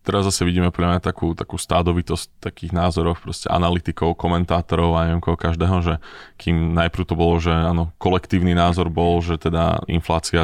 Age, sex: 20-39, male